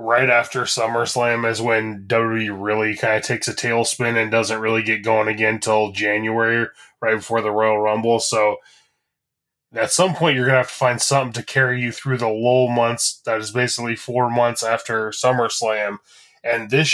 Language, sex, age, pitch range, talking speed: English, male, 20-39, 110-125 Hz, 185 wpm